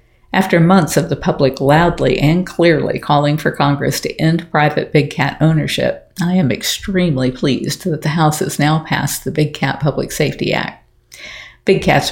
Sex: female